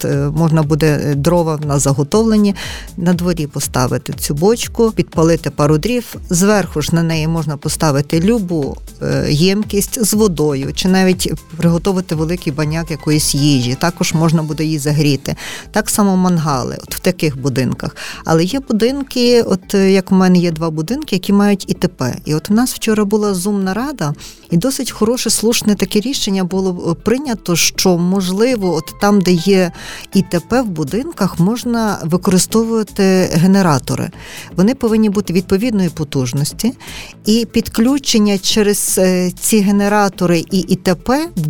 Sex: female